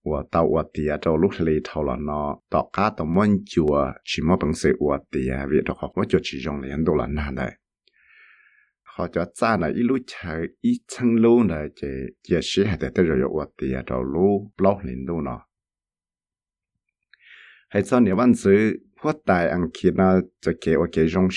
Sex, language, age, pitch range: male, English, 60-79, 75-100 Hz